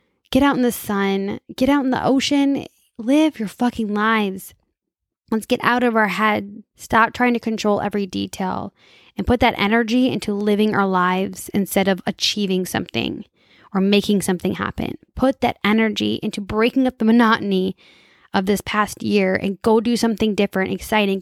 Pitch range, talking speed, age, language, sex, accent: 190-235 Hz, 170 wpm, 10-29, English, female, American